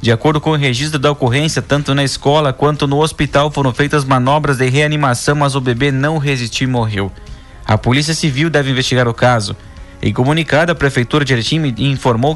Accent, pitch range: Brazilian, 125-155 Hz